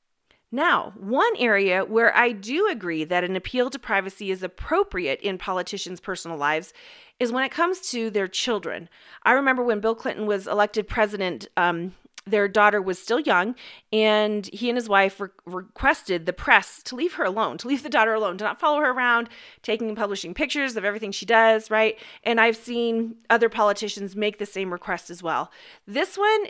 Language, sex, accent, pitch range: English, female, American, 195-260 Hz